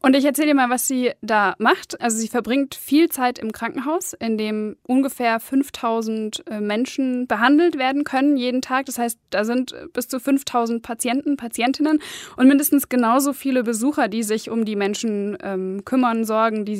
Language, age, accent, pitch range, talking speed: German, 10-29, German, 210-265 Hz, 175 wpm